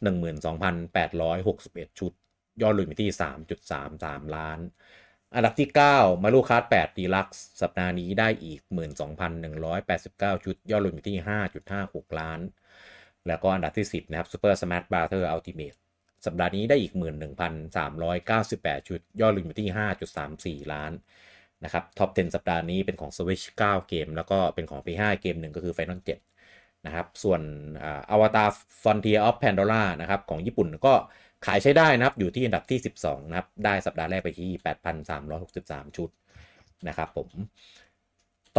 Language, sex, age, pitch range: Thai, male, 30-49, 85-105 Hz